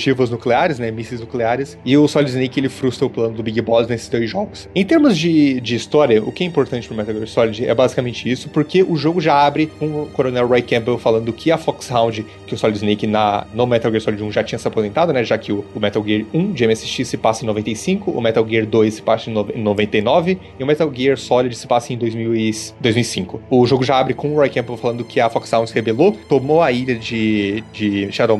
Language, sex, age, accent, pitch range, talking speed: Portuguese, male, 30-49, Brazilian, 115-150 Hz, 240 wpm